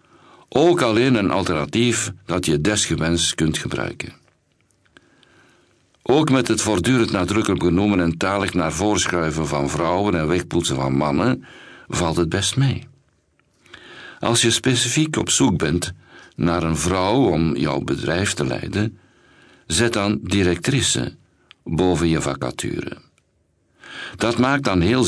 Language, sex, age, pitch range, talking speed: Dutch, male, 60-79, 85-115 Hz, 125 wpm